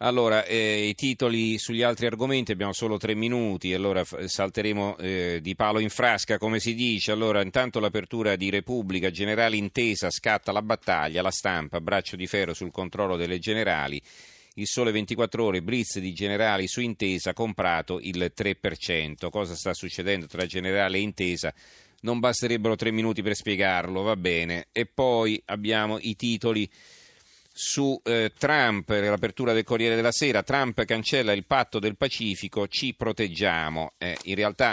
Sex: male